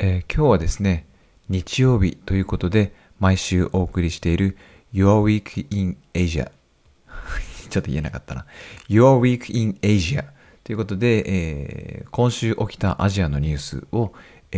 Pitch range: 80-105 Hz